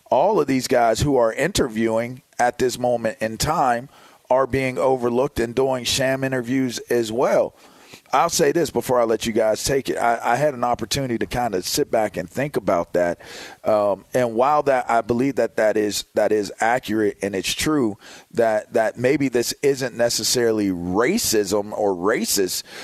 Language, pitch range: English, 100-130 Hz